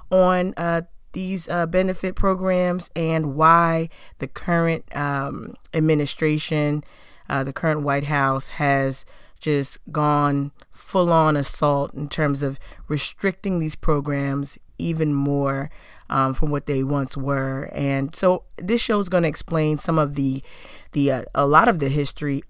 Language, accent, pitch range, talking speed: English, American, 140-160 Hz, 145 wpm